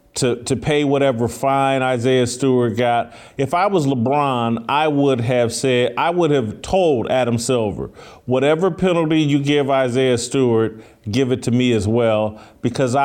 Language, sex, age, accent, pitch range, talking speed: English, male, 40-59, American, 120-150 Hz, 160 wpm